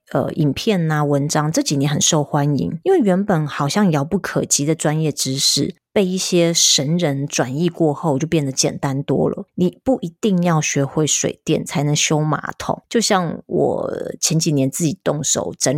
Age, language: 30-49, Chinese